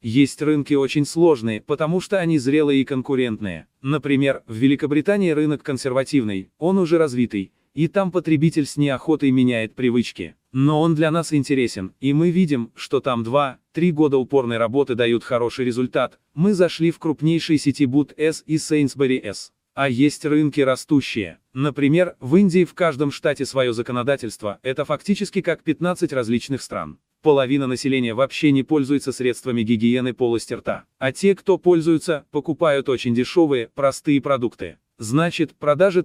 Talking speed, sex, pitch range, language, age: 150 wpm, male, 125-155 Hz, Russian, 30-49